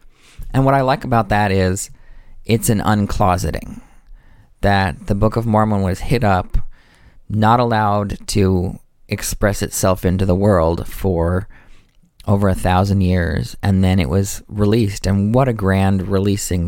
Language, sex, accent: English, male, American